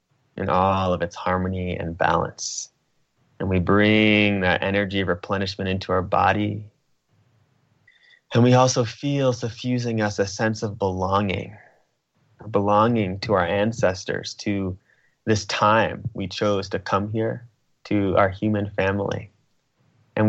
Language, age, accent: English, 20-39, American